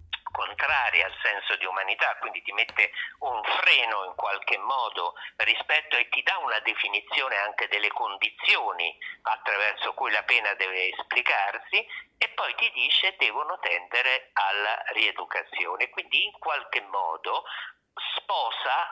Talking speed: 130 wpm